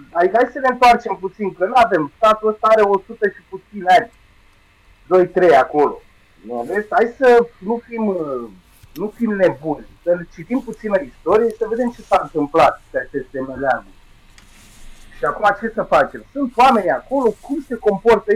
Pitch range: 140-230 Hz